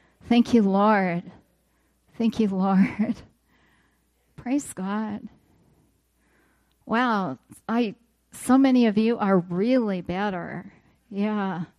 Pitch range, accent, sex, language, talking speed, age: 195-245 Hz, American, female, English, 85 wpm, 40-59